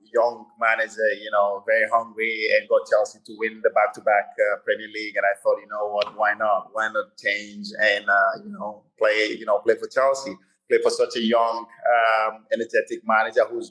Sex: male